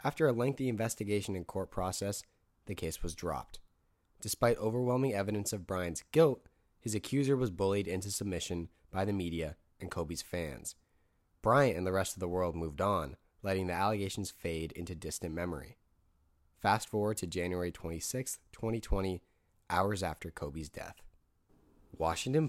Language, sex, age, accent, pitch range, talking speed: English, male, 20-39, American, 85-110 Hz, 150 wpm